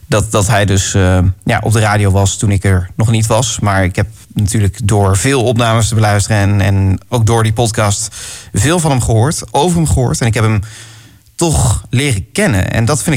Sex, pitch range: male, 105-125 Hz